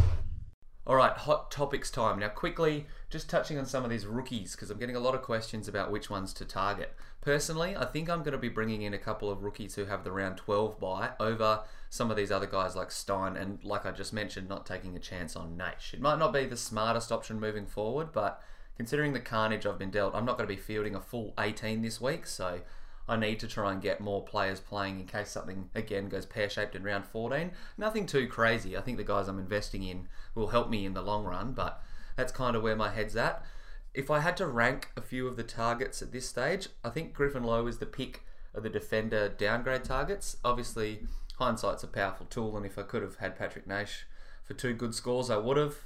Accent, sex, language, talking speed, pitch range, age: Australian, male, English, 235 wpm, 100-125 Hz, 20-39